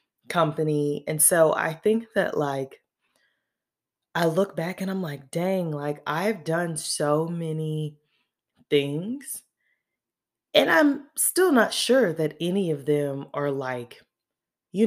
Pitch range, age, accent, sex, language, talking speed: 140-175 Hz, 20-39, American, female, English, 130 wpm